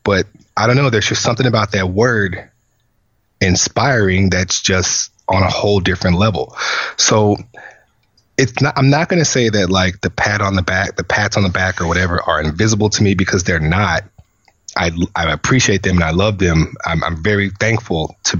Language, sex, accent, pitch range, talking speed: English, male, American, 85-110 Hz, 195 wpm